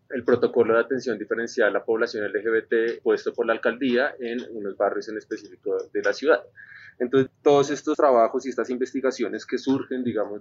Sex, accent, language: male, Colombian, English